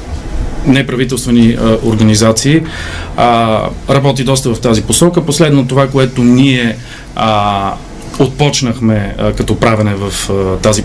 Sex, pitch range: male, 110-140 Hz